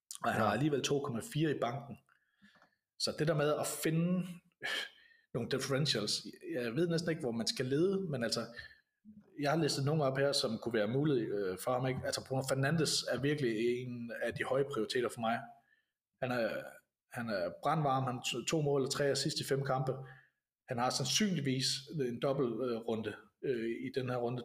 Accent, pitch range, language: native, 125-150 Hz, Danish